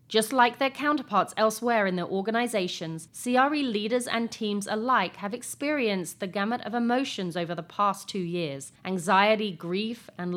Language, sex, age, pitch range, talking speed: English, female, 30-49, 180-240 Hz, 155 wpm